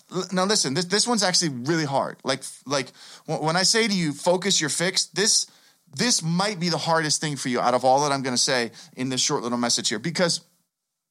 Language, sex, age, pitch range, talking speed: English, male, 30-49, 140-195 Hz, 225 wpm